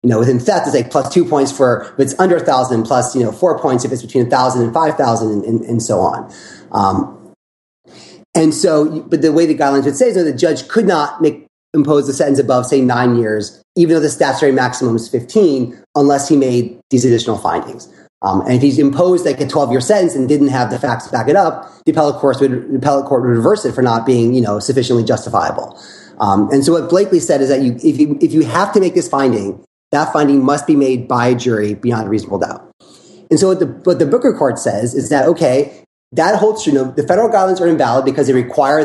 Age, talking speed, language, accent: 30-49, 240 wpm, English, American